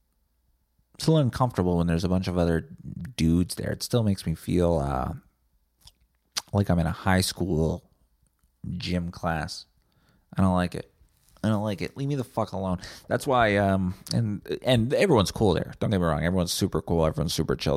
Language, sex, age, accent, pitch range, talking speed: English, male, 30-49, American, 80-115 Hz, 185 wpm